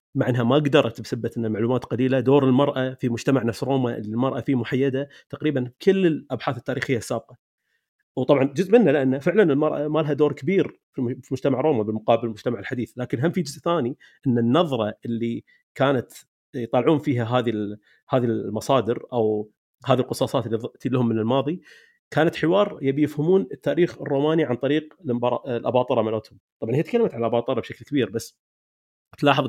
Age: 30-49